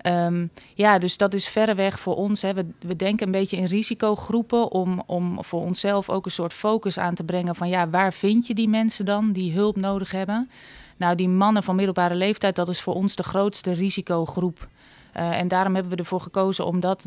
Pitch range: 170-195 Hz